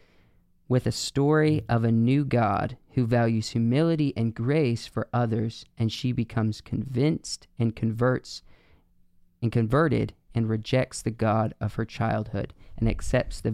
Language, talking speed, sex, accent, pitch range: English, 140 wpm, male, American, 110-125 Hz